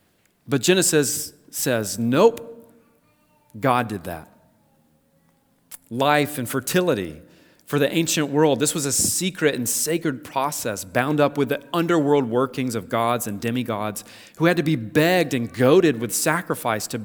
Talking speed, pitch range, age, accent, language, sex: 145 wpm, 125-165 Hz, 40-59, American, English, male